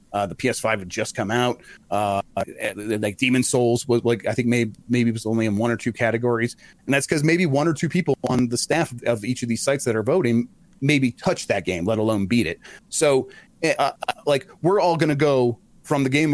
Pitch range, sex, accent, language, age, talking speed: 115-150 Hz, male, American, English, 30-49, 230 wpm